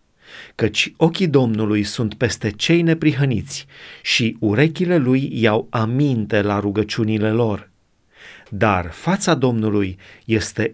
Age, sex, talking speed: 30-49, male, 105 wpm